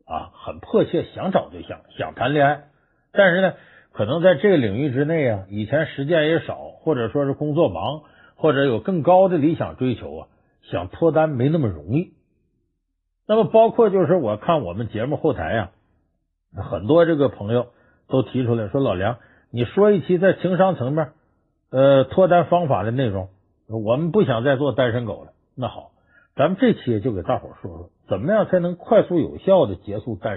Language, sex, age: Chinese, male, 50-69